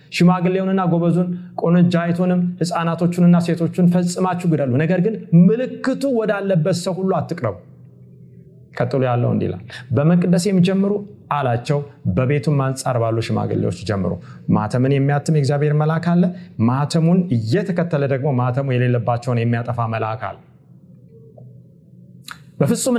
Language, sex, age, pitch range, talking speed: Amharic, male, 30-49, 125-180 Hz, 95 wpm